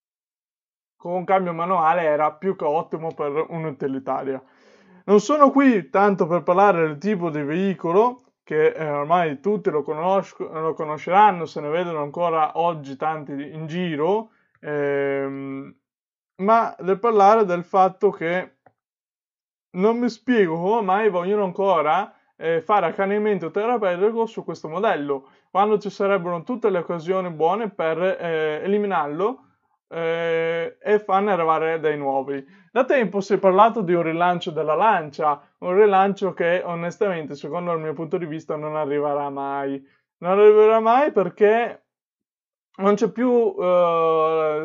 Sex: male